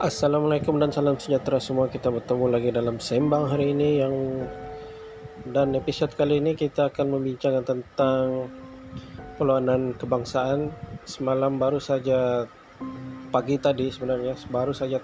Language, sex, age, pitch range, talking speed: Malay, male, 20-39, 125-140 Hz, 125 wpm